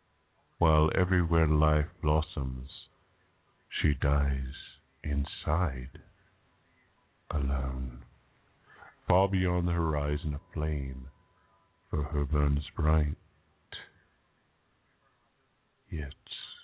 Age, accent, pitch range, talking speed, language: 50-69, American, 70-85 Hz, 70 wpm, English